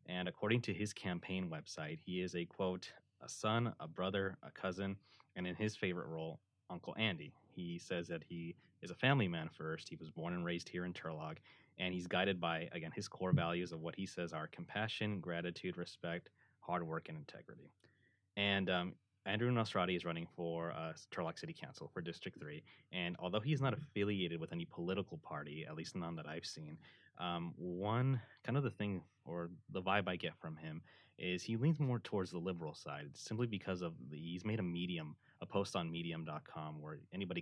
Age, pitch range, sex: 20-39, 85-100 Hz, male